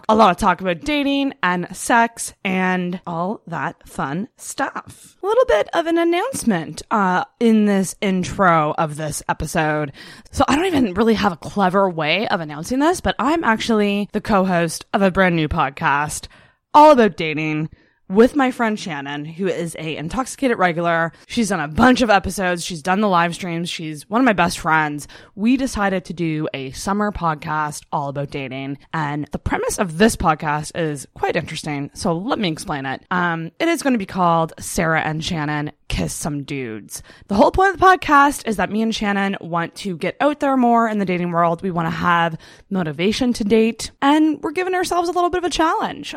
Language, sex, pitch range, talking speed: English, female, 165-230 Hz, 195 wpm